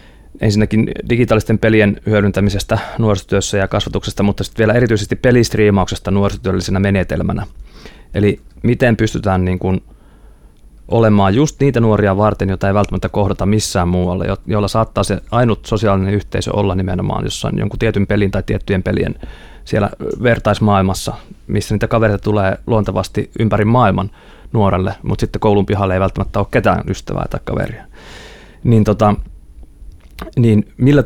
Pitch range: 95-110 Hz